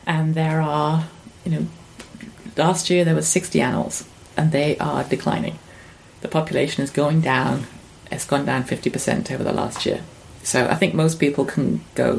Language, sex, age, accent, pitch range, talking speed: English, female, 30-49, British, 140-165 Hz, 170 wpm